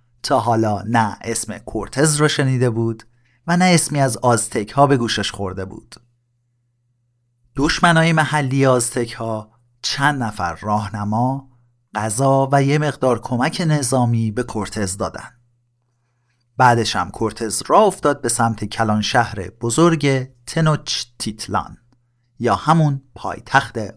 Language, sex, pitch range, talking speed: Persian, male, 115-140 Hz, 125 wpm